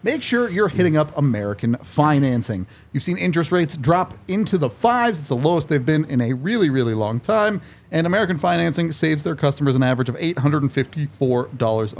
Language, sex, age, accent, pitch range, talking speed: English, male, 30-49, American, 120-160 Hz, 180 wpm